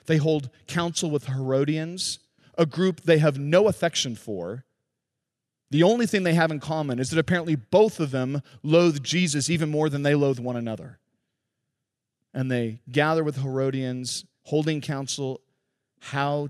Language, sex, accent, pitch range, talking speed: English, male, American, 130-160 Hz, 155 wpm